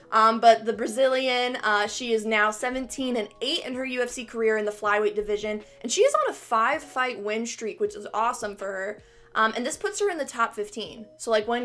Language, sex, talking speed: English, female, 230 wpm